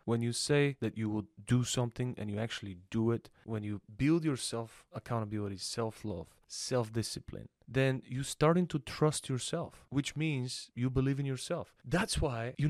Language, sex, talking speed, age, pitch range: English, male, 165 wpm, 30-49, 110-135 Hz